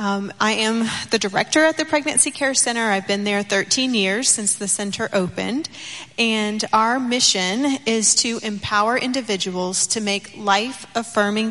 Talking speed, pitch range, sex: 150 wpm, 195-220 Hz, female